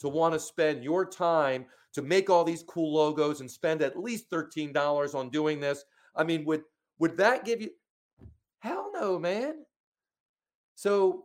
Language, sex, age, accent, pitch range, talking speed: English, male, 40-59, American, 120-155 Hz, 165 wpm